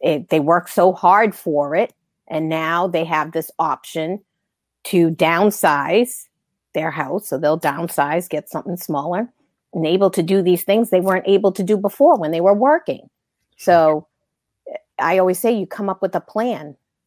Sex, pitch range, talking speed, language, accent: female, 170-215 Hz, 170 wpm, English, American